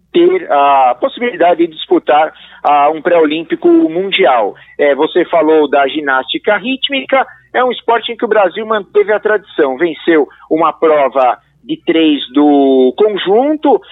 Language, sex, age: Portuguese, male, 50-69